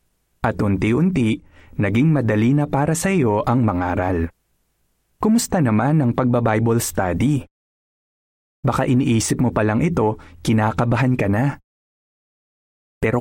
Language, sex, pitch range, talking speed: Filipino, male, 95-130 Hz, 120 wpm